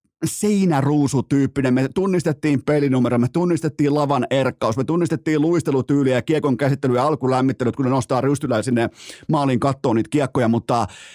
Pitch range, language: 125-155 Hz, Finnish